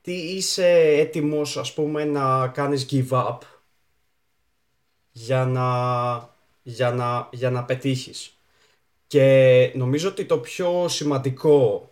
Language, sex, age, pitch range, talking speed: Greek, male, 20-39, 130-155 Hz, 110 wpm